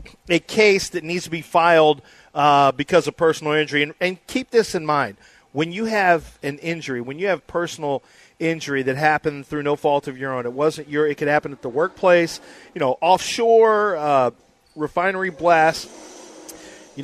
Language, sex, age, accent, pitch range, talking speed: English, male, 40-59, American, 140-170 Hz, 185 wpm